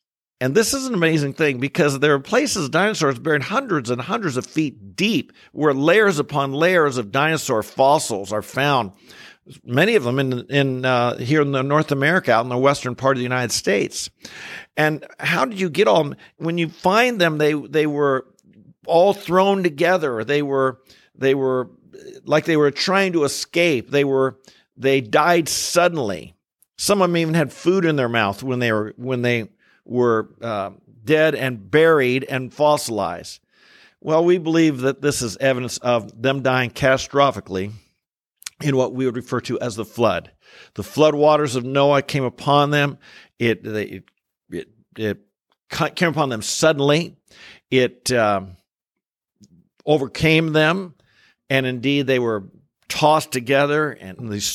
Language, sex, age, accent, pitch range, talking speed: English, male, 50-69, American, 125-155 Hz, 165 wpm